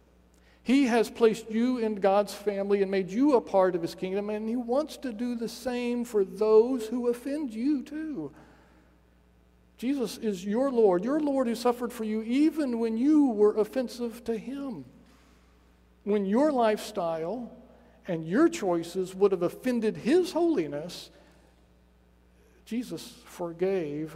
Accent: American